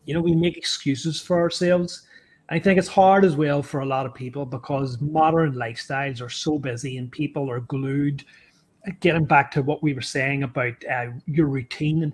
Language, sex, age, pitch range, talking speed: English, male, 30-49, 135-160 Hz, 200 wpm